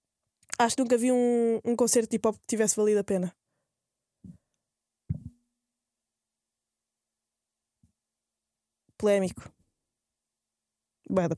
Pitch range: 205-270 Hz